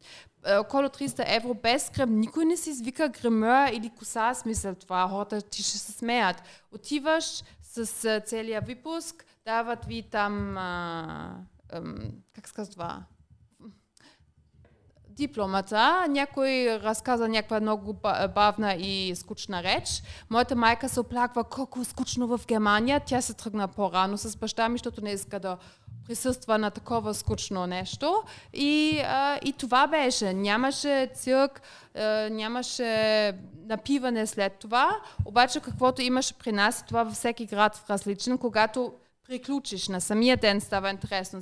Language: Bulgarian